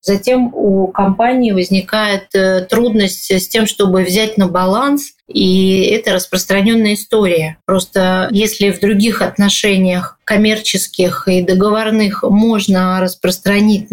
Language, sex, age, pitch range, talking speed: Russian, female, 30-49, 190-220 Hz, 110 wpm